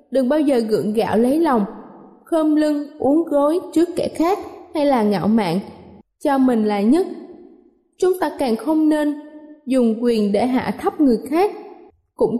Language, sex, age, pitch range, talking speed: Vietnamese, female, 20-39, 245-330 Hz, 170 wpm